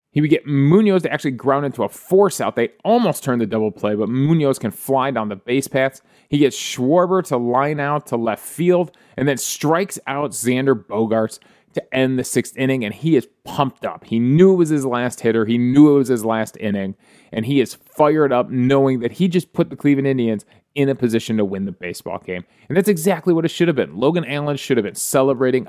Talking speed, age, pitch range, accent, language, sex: 230 wpm, 30-49, 115-150 Hz, American, English, male